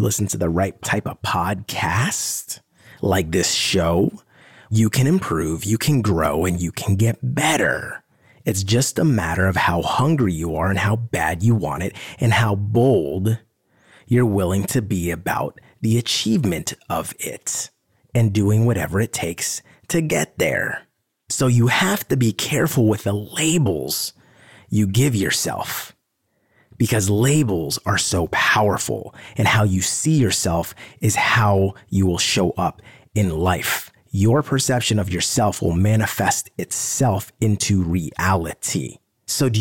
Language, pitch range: English, 95-120 Hz